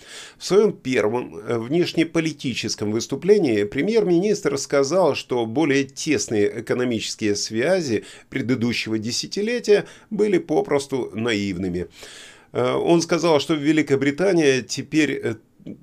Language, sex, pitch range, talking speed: Russian, male, 105-150 Hz, 85 wpm